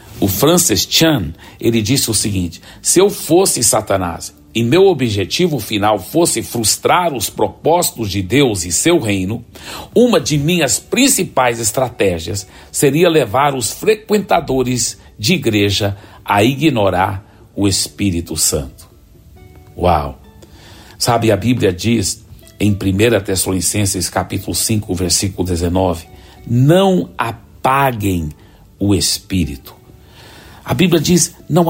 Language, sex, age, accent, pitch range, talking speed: Portuguese, male, 60-79, Brazilian, 95-140 Hz, 115 wpm